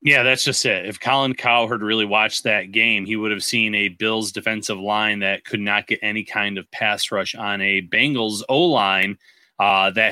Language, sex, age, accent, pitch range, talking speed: English, male, 30-49, American, 105-120 Hz, 195 wpm